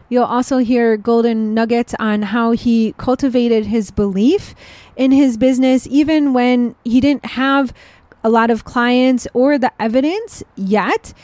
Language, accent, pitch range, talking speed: English, American, 225-265 Hz, 145 wpm